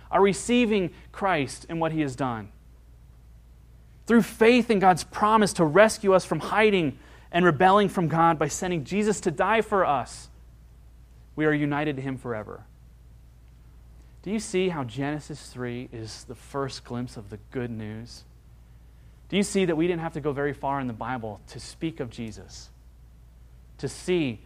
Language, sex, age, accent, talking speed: English, male, 30-49, American, 170 wpm